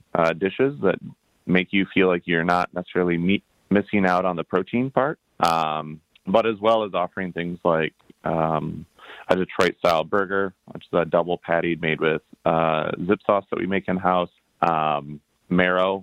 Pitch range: 80-95 Hz